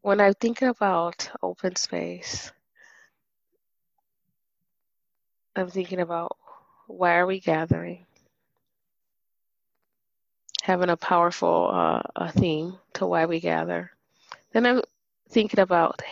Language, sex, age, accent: English, female, 20-39, American